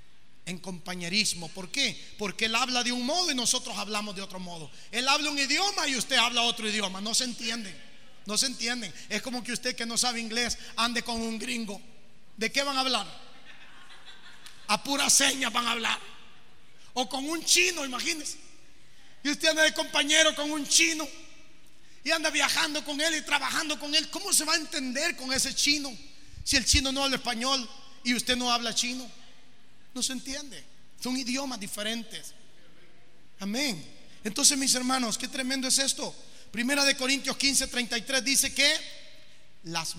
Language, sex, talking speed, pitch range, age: Spanish, male, 175 wpm, 190-270 Hz, 30-49